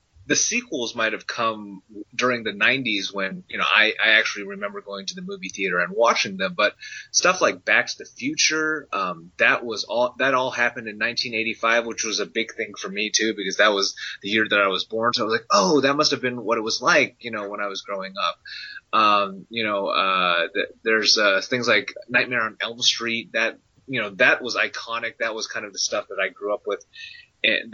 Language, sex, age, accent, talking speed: English, male, 30-49, American, 230 wpm